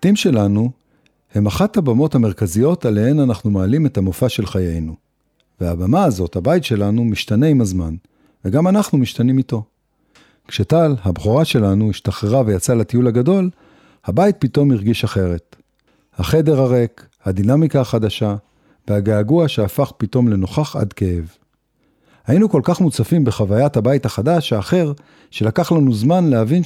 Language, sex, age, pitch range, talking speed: Hebrew, male, 50-69, 105-155 Hz, 130 wpm